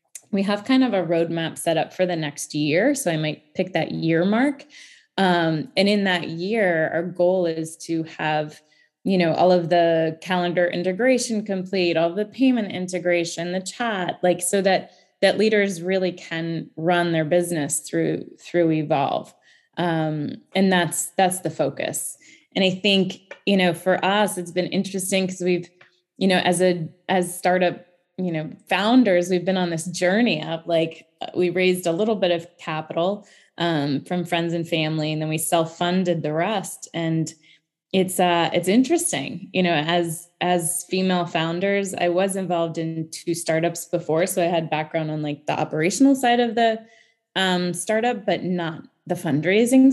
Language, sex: English, female